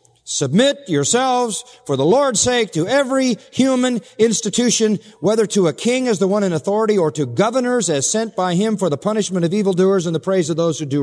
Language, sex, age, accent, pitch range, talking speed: English, male, 40-59, American, 120-170 Hz, 205 wpm